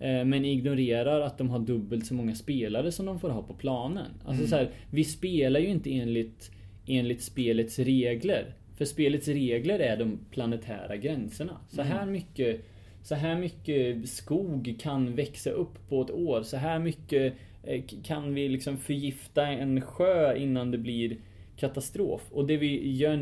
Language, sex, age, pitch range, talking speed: Swedish, male, 20-39, 115-140 Hz, 165 wpm